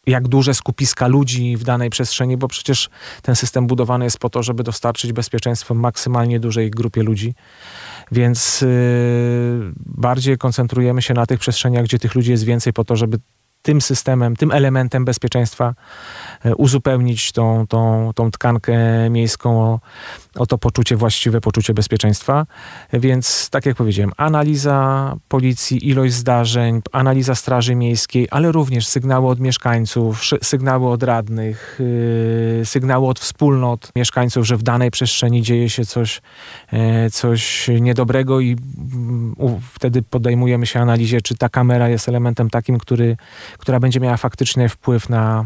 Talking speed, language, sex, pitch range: 135 wpm, Polish, male, 115-130 Hz